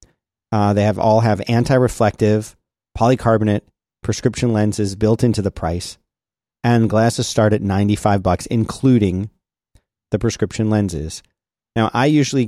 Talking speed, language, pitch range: 125 wpm, English, 105-125 Hz